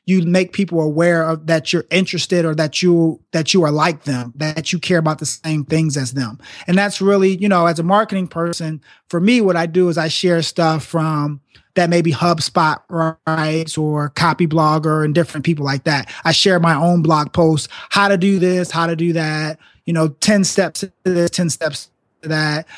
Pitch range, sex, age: 155-180 Hz, male, 30-49